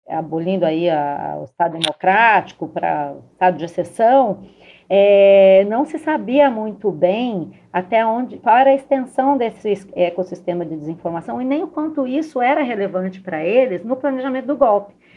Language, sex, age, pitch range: Portuguese, female, 40-59, 180-235 Hz